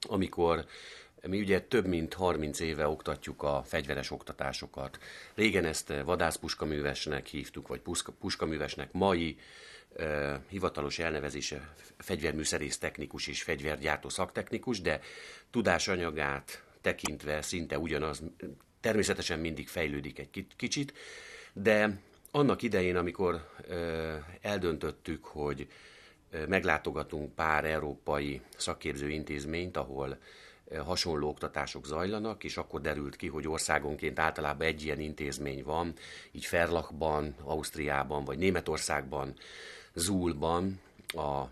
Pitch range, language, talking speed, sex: 75-85 Hz, Hungarian, 105 wpm, male